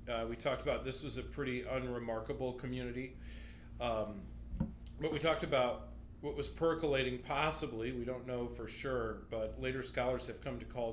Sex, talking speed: male, 170 wpm